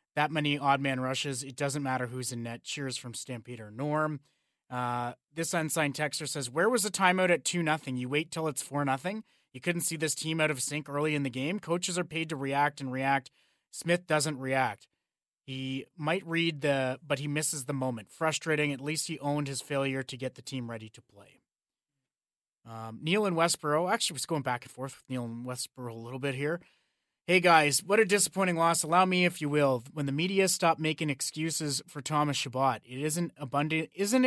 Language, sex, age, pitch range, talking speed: English, male, 30-49, 130-160 Hz, 215 wpm